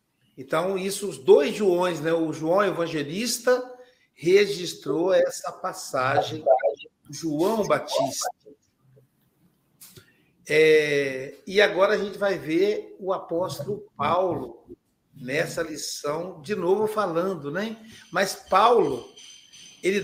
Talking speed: 100 wpm